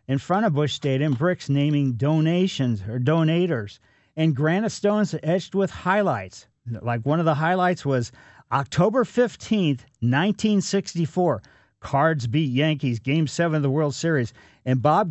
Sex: male